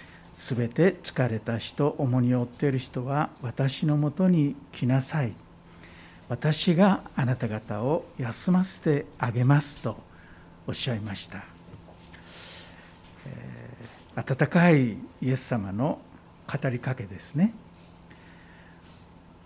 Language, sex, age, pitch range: Japanese, male, 60-79, 105-155 Hz